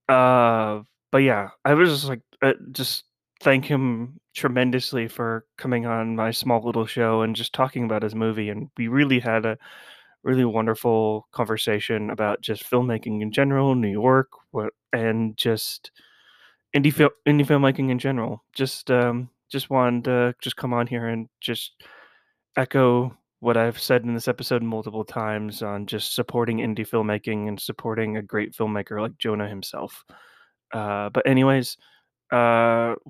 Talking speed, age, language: 155 wpm, 20-39, English